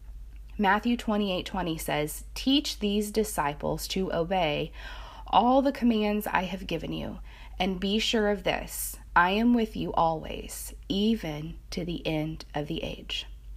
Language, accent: English, American